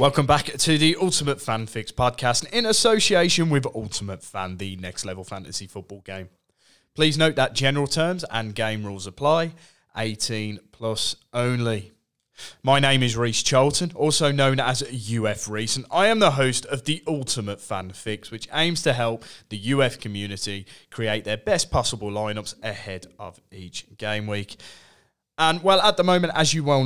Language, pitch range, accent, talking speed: English, 105-145 Hz, British, 170 wpm